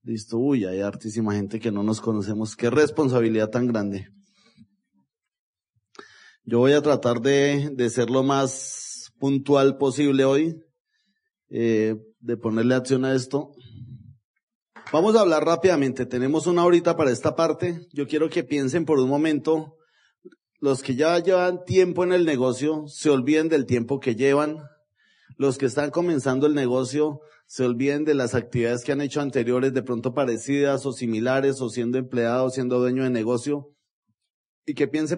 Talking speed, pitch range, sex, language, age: 160 wpm, 120-155 Hz, male, Spanish, 30-49